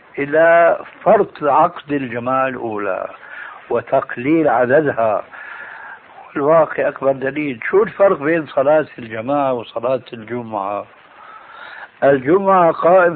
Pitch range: 125-170 Hz